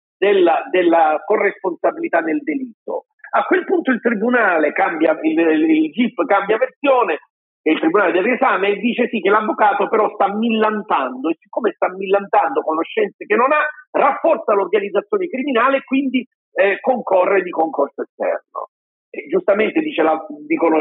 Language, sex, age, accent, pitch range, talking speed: Italian, male, 50-69, native, 190-305 Hz, 150 wpm